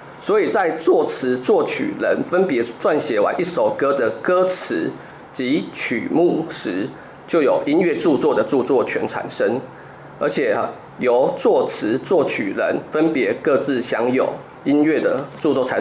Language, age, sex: Chinese, 20-39, male